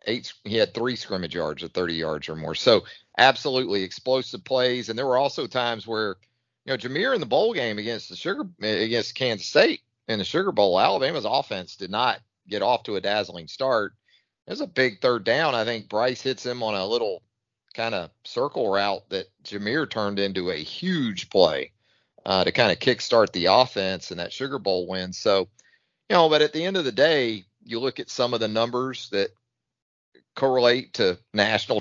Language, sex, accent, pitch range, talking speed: English, male, American, 100-125 Hz, 200 wpm